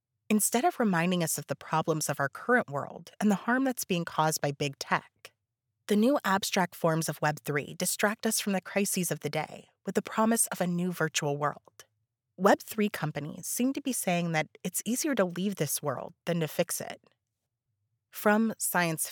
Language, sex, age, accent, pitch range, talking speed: English, female, 30-49, American, 150-205 Hz, 190 wpm